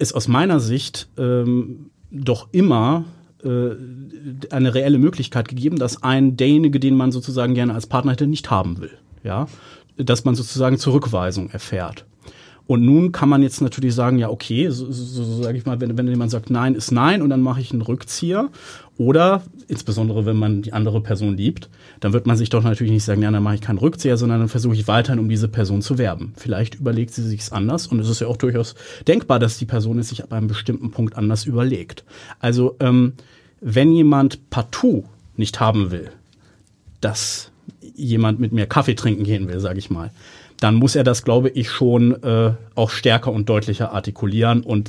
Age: 30-49